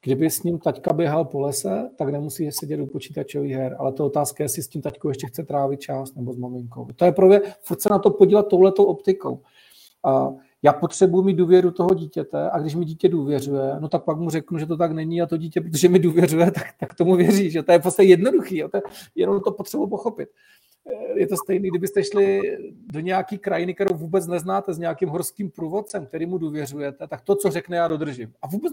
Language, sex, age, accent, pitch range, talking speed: Czech, male, 40-59, native, 160-195 Hz, 220 wpm